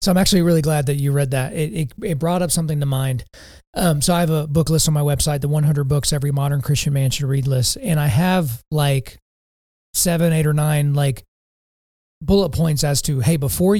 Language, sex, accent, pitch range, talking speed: English, male, American, 140-170 Hz, 225 wpm